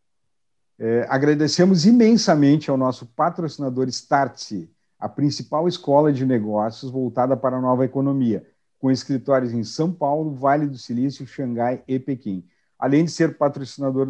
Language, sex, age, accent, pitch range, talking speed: Portuguese, male, 50-69, Brazilian, 130-150 Hz, 135 wpm